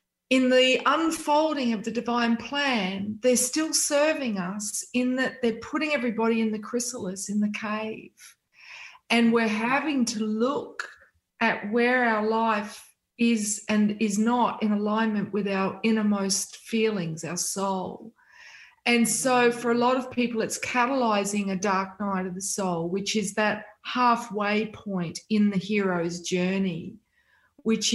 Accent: Australian